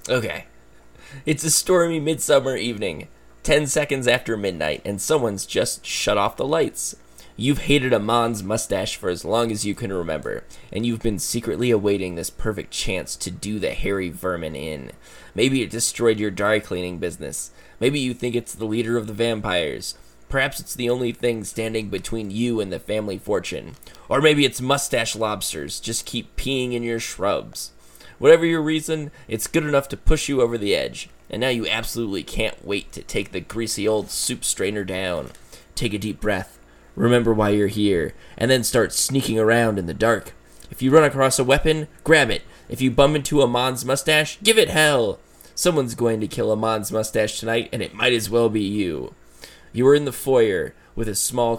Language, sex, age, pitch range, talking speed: English, male, 20-39, 105-130 Hz, 190 wpm